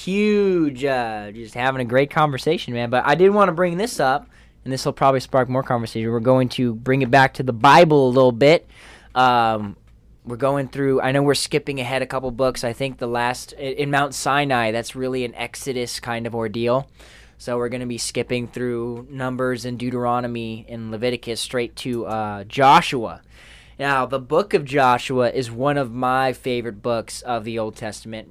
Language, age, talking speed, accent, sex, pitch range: English, 10-29, 195 wpm, American, male, 120-140 Hz